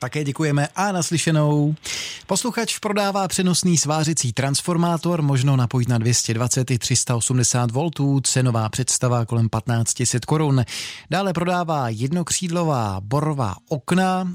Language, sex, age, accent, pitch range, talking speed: Czech, male, 20-39, native, 115-155 Hz, 110 wpm